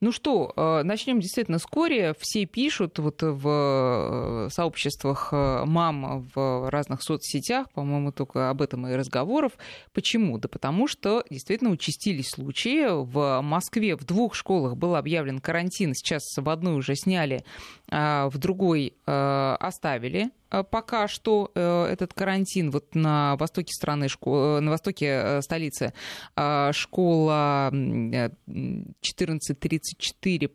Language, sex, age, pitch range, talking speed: Russian, female, 20-39, 140-185 Hz, 110 wpm